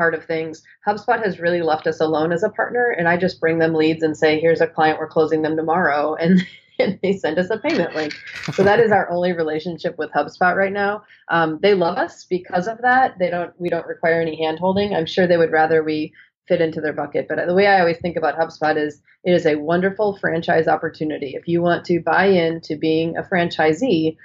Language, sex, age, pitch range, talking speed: English, female, 30-49, 155-180 Hz, 230 wpm